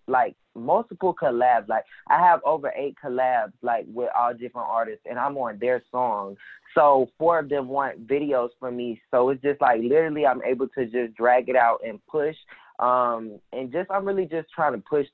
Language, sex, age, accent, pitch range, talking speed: English, male, 20-39, American, 115-135 Hz, 200 wpm